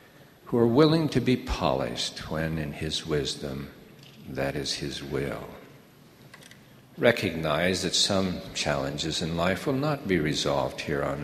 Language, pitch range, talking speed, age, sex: English, 75-100 Hz, 140 wpm, 60-79, male